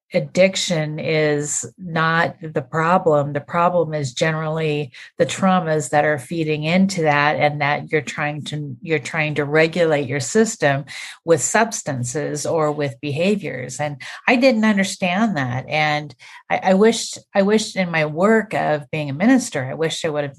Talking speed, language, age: 160 wpm, English, 50-69